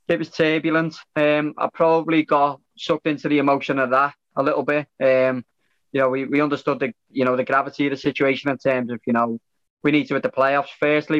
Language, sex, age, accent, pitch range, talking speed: English, male, 20-39, British, 130-150 Hz, 225 wpm